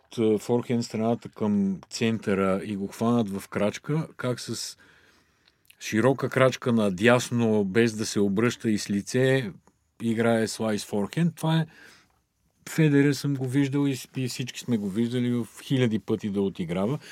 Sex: male